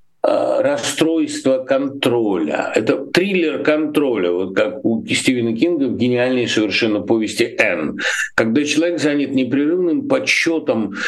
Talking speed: 110 wpm